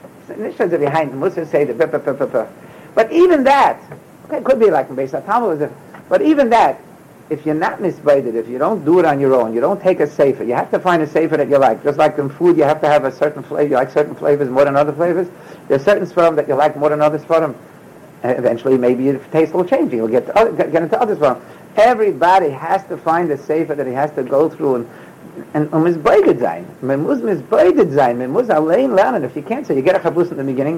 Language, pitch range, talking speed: English, 150-195 Hz, 220 wpm